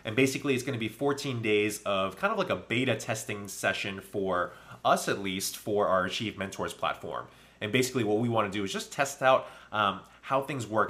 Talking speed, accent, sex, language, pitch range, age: 220 wpm, American, male, English, 100-125 Hz, 30-49